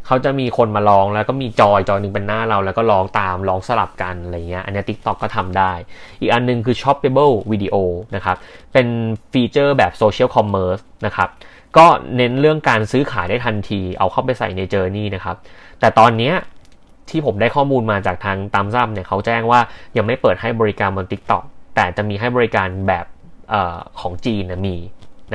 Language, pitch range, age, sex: Thai, 95-120 Hz, 20-39, male